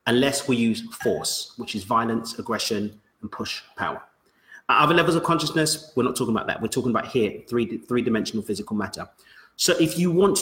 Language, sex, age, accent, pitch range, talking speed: English, male, 30-49, British, 125-165 Hz, 180 wpm